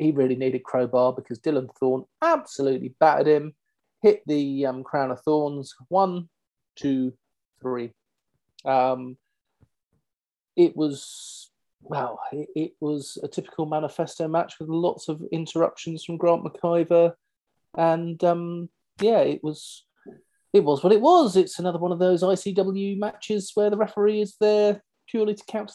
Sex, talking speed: male, 145 wpm